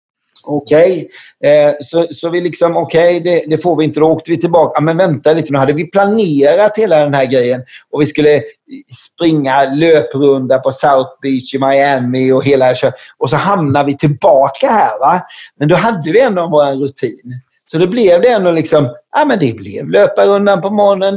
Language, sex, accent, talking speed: English, male, Swedish, 190 wpm